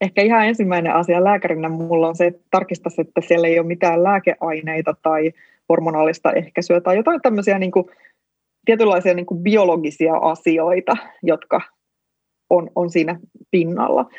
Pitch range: 170-205 Hz